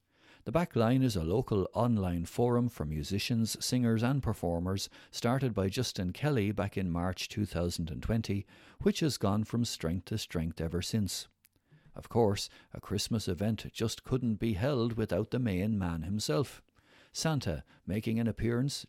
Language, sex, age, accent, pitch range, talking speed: English, male, 60-79, Irish, 90-115 Hz, 150 wpm